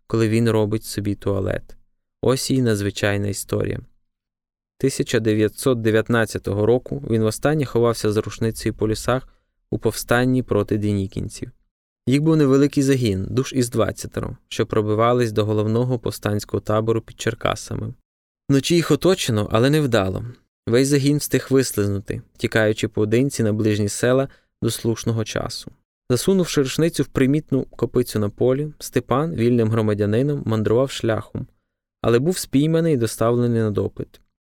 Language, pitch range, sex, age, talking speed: Ukrainian, 110-135 Hz, male, 20-39, 130 wpm